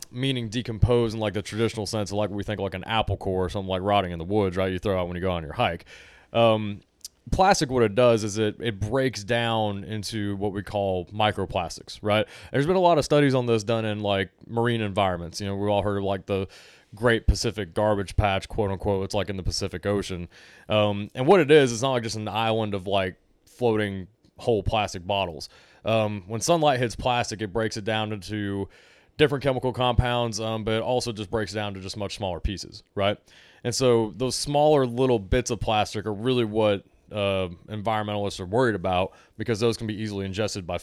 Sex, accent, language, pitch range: male, American, English, 100-115 Hz